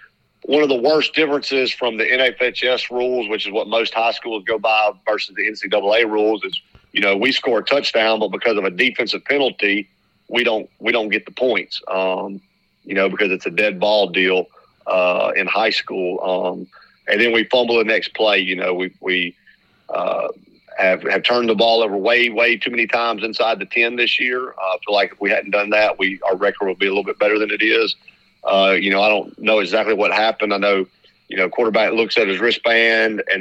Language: English